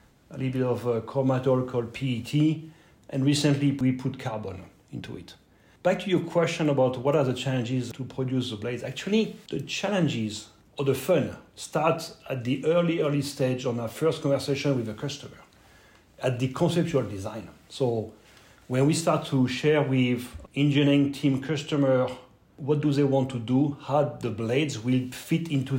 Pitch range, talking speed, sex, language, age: 130-150 Hz, 170 wpm, male, English, 40-59